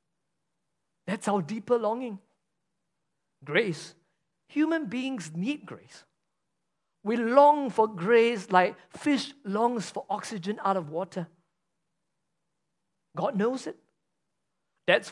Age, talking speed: 50-69, 100 wpm